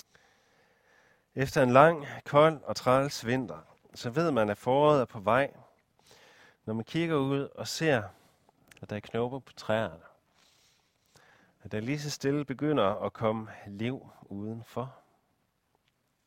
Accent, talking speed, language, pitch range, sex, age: native, 135 wpm, Danish, 110-140 Hz, male, 40-59